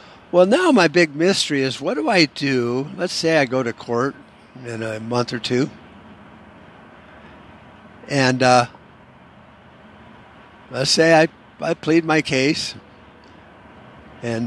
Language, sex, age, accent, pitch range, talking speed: English, male, 50-69, American, 115-145 Hz, 130 wpm